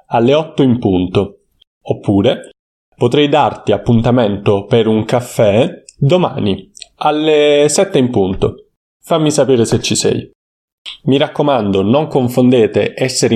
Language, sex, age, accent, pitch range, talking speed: Italian, male, 30-49, native, 110-150 Hz, 115 wpm